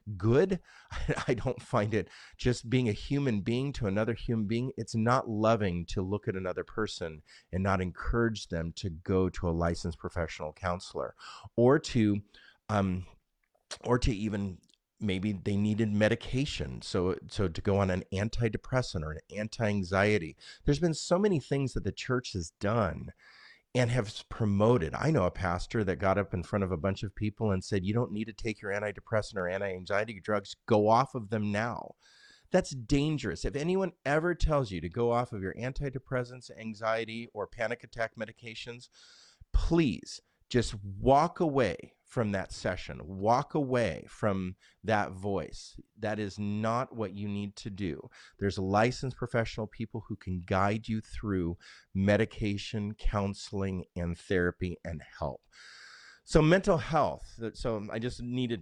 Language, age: English, 30-49